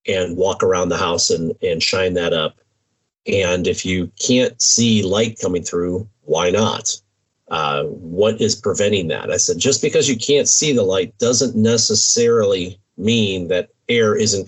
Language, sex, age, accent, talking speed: English, male, 40-59, American, 165 wpm